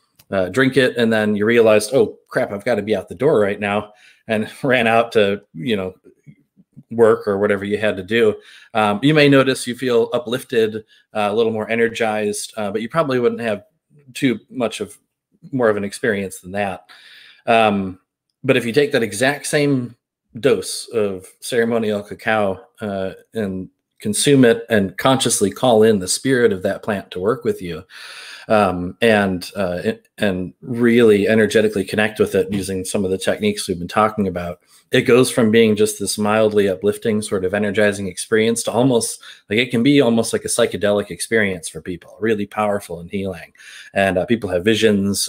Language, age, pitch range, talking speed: English, 30-49, 100-120 Hz, 185 wpm